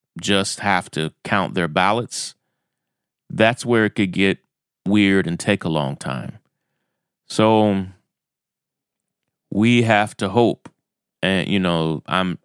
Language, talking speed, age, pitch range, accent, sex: English, 125 wpm, 30-49, 85-105 Hz, American, male